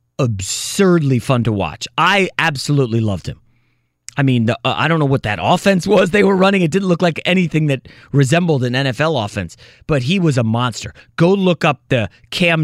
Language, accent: English, American